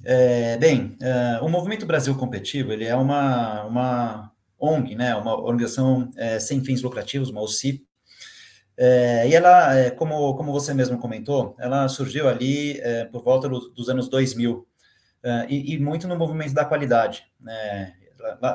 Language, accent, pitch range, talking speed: Portuguese, Brazilian, 120-145 Hz, 160 wpm